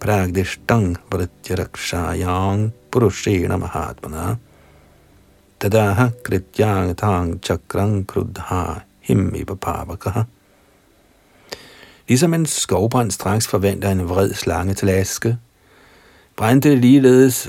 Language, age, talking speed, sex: Danish, 60-79, 50 wpm, male